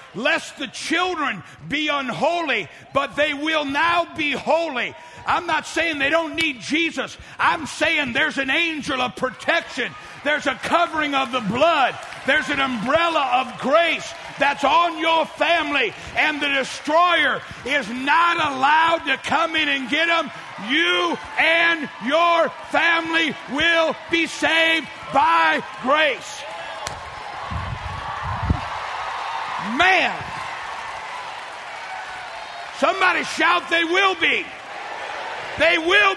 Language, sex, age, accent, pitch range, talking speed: English, male, 50-69, American, 290-335 Hz, 115 wpm